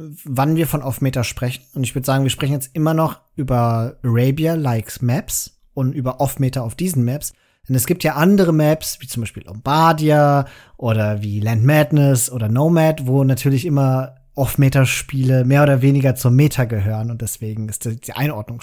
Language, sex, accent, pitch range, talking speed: German, male, German, 120-155 Hz, 175 wpm